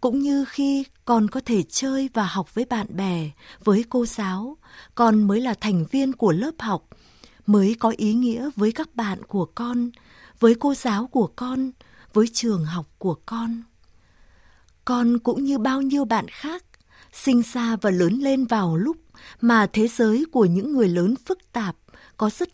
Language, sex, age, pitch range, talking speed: Vietnamese, female, 20-39, 205-265 Hz, 180 wpm